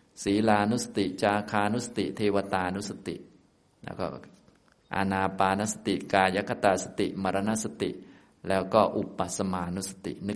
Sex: male